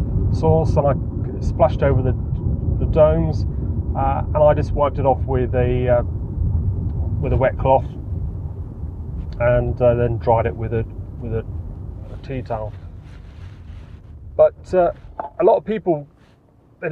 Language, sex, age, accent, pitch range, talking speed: English, male, 30-49, British, 95-150 Hz, 145 wpm